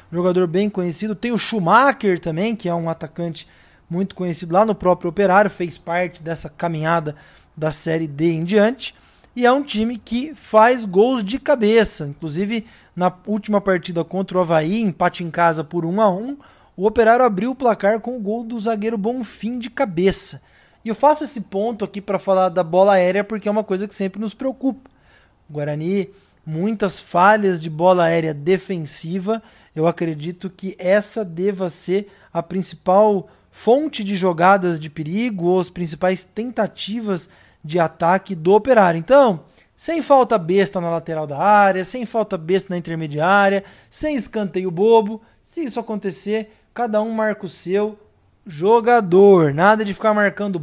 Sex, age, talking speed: male, 20-39, 160 wpm